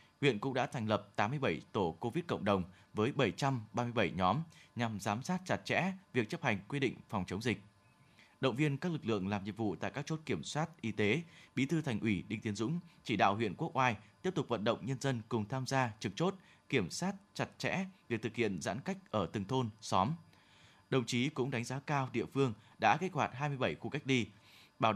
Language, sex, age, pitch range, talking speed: Vietnamese, male, 20-39, 110-150 Hz, 225 wpm